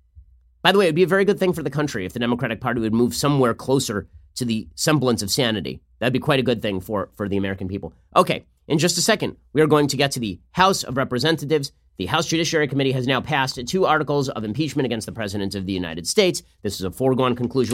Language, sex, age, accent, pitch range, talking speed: English, male, 30-49, American, 110-145 Hz, 250 wpm